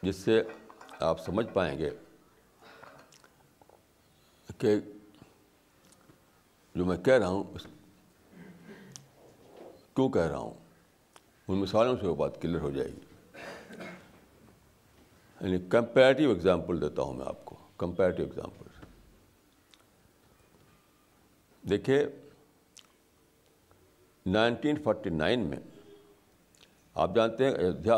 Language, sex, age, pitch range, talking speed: Urdu, male, 60-79, 95-115 Hz, 95 wpm